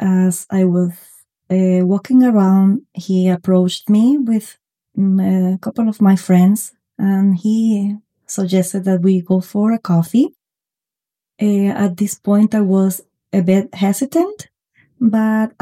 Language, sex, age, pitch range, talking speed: English, female, 20-39, 190-225 Hz, 130 wpm